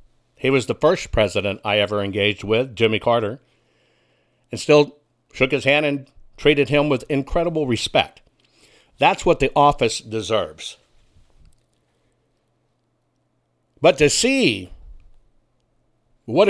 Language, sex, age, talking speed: English, male, 60-79, 115 wpm